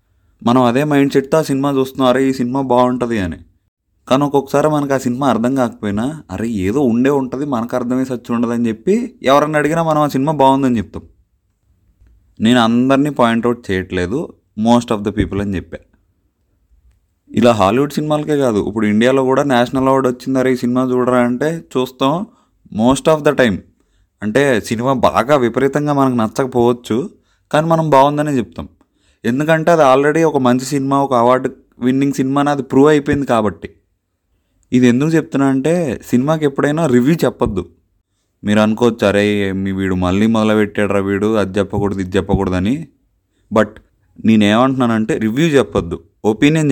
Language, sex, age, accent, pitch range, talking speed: Telugu, male, 30-49, native, 100-135 Hz, 145 wpm